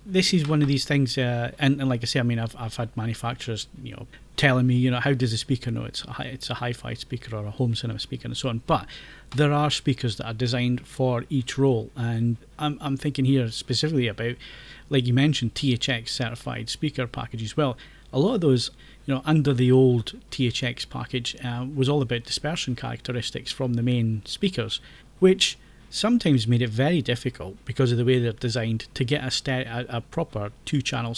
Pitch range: 120-135 Hz